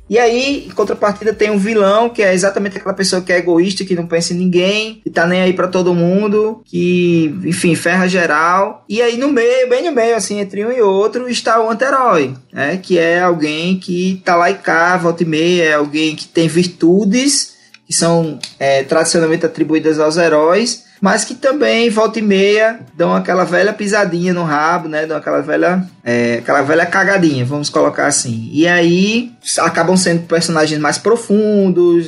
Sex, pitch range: male, 155-200 Hz